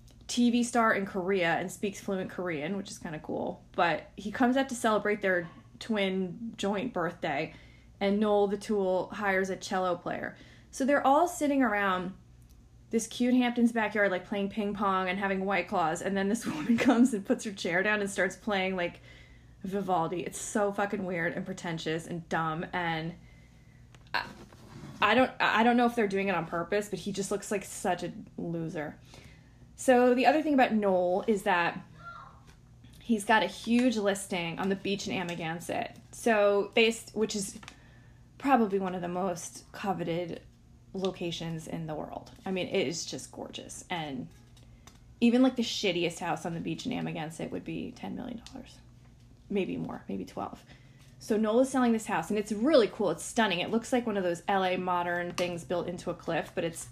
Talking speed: 185 wpm